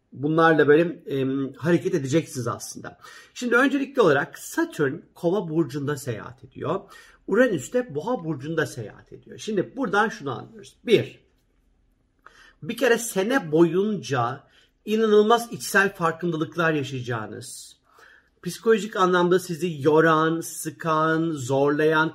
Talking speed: 105 wpm